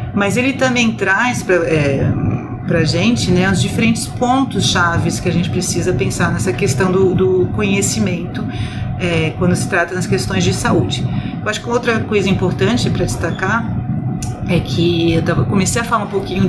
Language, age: Portuguese, 40-59